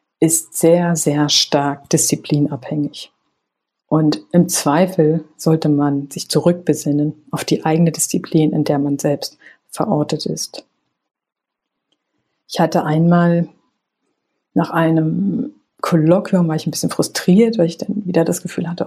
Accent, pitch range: German, 155-180 Hz